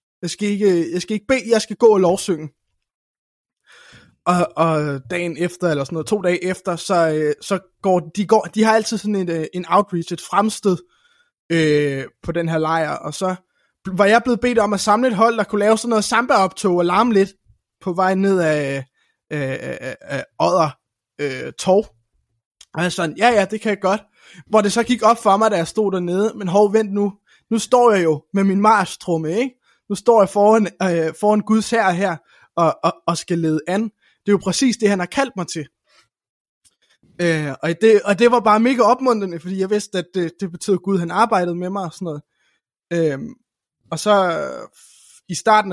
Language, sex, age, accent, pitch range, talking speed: Danish, male, 20-39, native, 170-210 Hz, 210 wpm